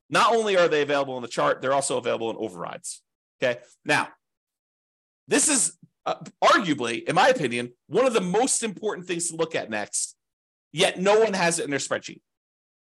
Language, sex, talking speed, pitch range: English, male, 180 wpm, 135-195 Hz